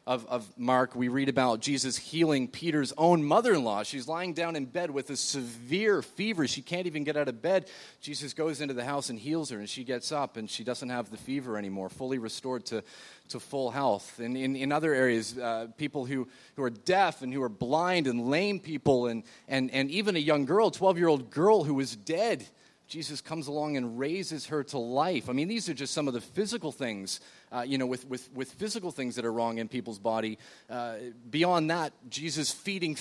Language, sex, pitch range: English, male, 125-180 Hz